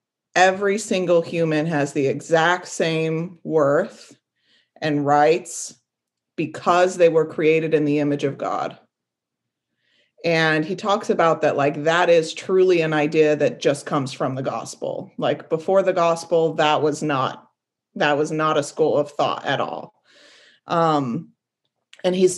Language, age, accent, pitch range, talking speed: English, 30-49, American, 150-180 Hz, 145 wpm